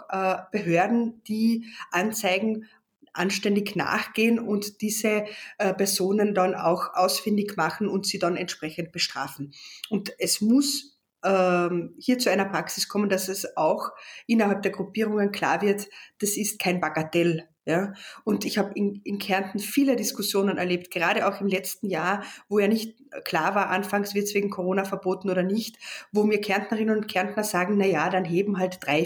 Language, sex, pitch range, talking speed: German, female, 180-210 Hz, 155 wpm